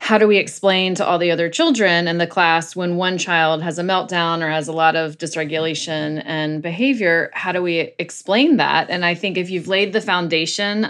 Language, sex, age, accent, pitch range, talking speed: English, female, 20-39, American, 165-190 Hz, 215 wpm